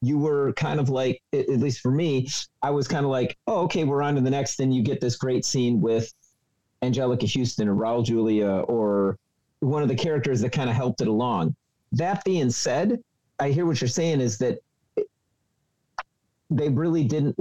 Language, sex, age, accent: English, male, 40-59, American